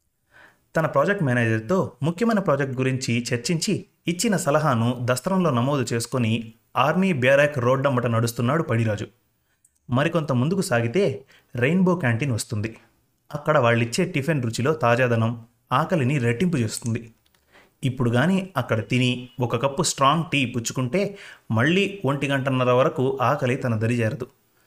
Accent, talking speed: native, 115 wpm